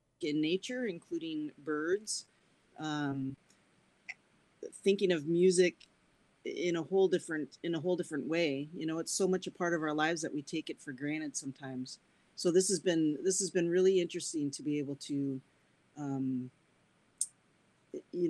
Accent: American